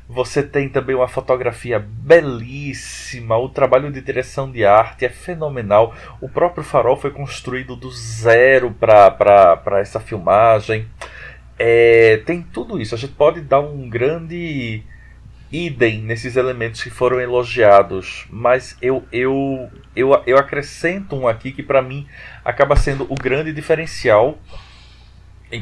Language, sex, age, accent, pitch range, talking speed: Portuguese, male, 20-39, Brazilian, 115-140 Hz, 125 wpm